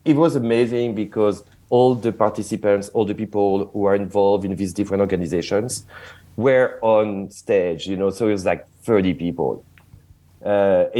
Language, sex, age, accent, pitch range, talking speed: English, male, 40-59, French, 95-120 Hz, 160 wpm